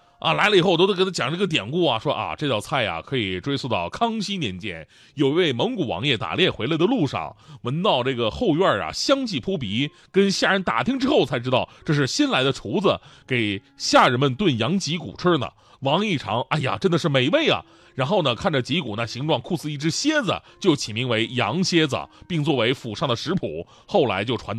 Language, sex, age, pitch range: Chinese, male, 30-49, 115-185 Hz